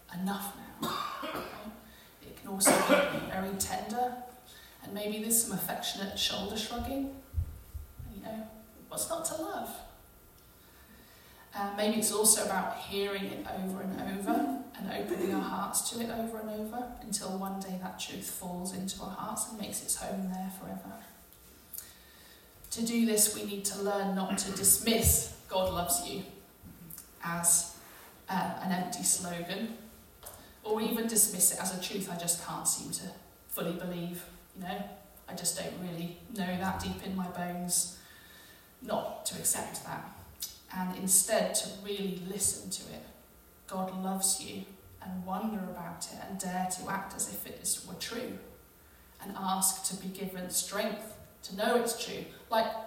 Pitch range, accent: 185-215 Hz, British